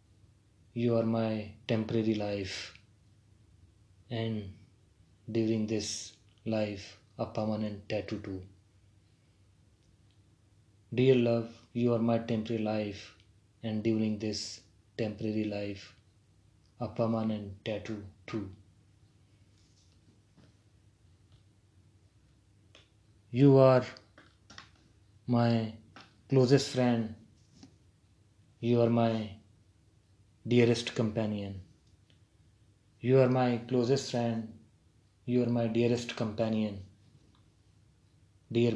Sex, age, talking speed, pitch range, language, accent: male, 20-39, 75 wpm, 100-115 Hz, Hindi, native